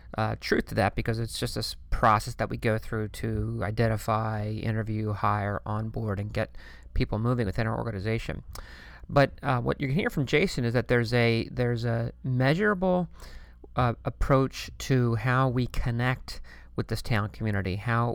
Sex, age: male, 40-59